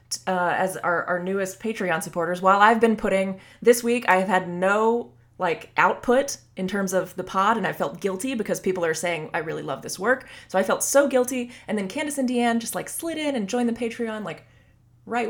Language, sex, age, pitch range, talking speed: English, female, 20-39, 165-235 Hz, 225 wpm